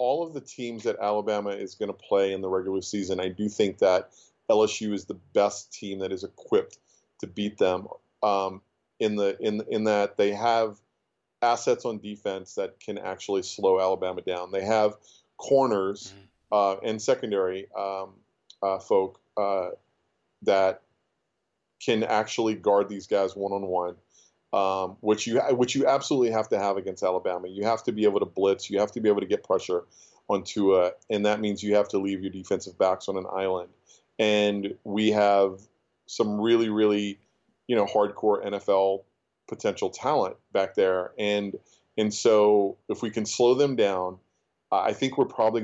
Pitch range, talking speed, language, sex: 95-110 Hz, 170 wpm, English, male